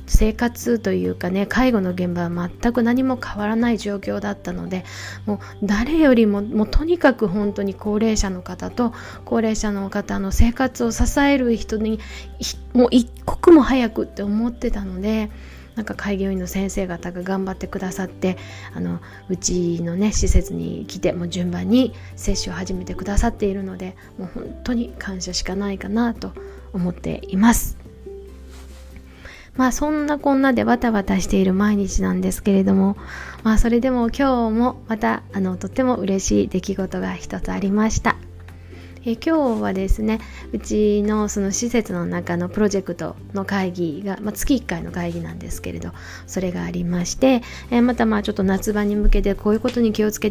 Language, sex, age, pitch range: Japanese, female, 20-39, 175-230 Hz